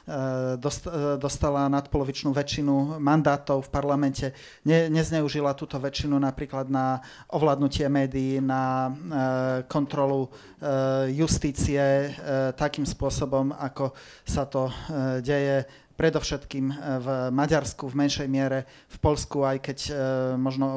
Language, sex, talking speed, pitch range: Slovak, male, 100 wpm, 135-145 Hz